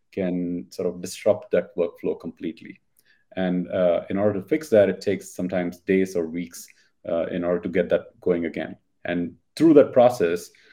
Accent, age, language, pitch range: Indian, 30-49, English, 95-110 Hz